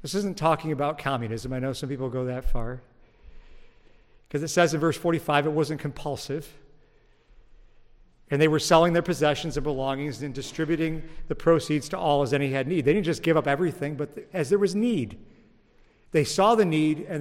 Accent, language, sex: American, English, male